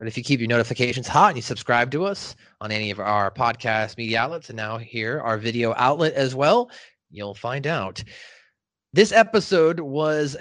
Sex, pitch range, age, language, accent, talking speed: male, 120-170 Hz, 30-49, English, American, 190 wpm